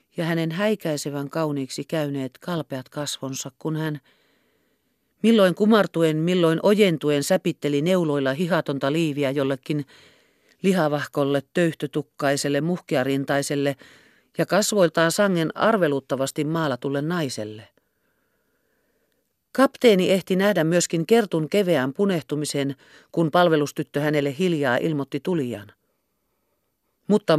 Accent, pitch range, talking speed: native, 145-185 Hz, 90 wpm